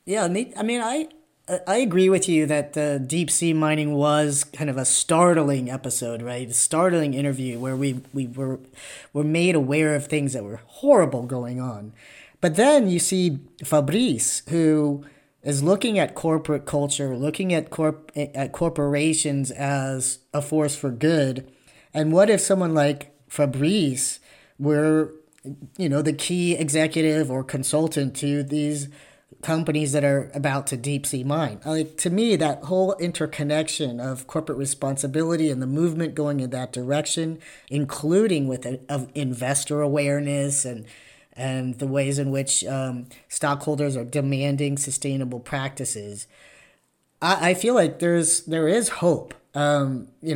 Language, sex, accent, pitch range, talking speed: English, male, American, 135-160 Hz, 150 wpm